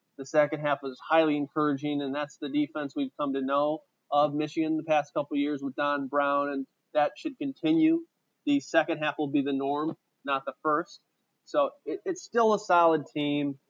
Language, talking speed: English, 195 wpm